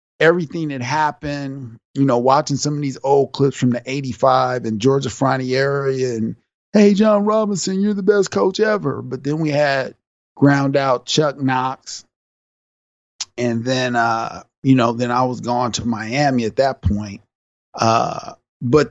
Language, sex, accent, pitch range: English, male, American, 120-140 Hz